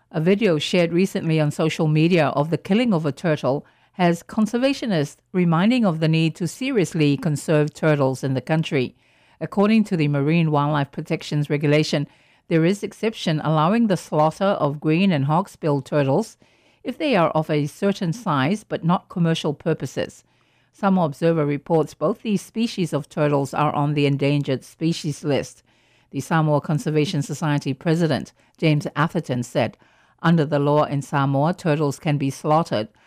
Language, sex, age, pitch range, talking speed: English, female, 50-69, 145-175 Hz, 155 wpm